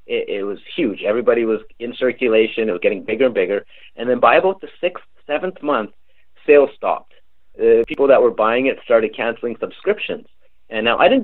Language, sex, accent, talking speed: English, male, American, 200 wpm